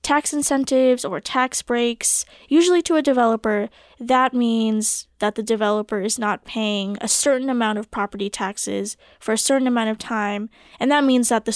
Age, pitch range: 10-29, 220-260 Hz